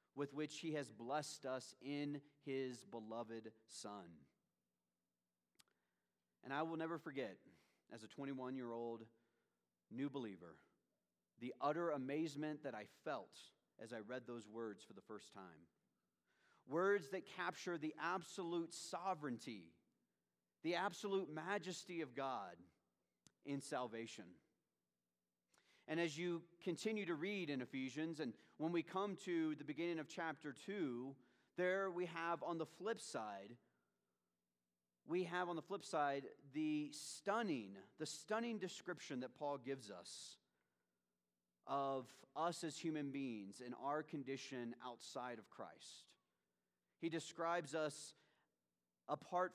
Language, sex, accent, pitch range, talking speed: English, male, American, 120-170 Hz, 125 wpm